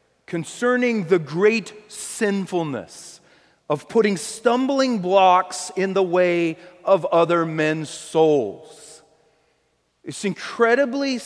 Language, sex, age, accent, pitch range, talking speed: English, male, 40-59, American, 155-195 Hz, 90 wpm